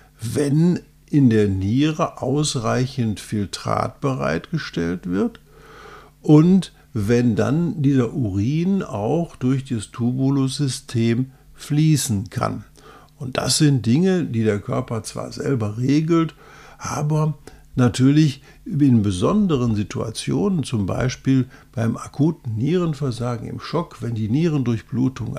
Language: German